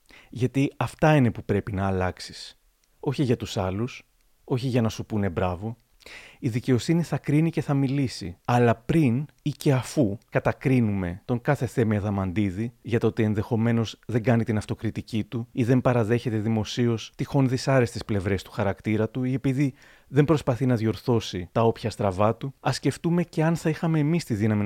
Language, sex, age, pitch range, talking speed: Greek, male, 30-49, 110-135 Hz, 175 wpm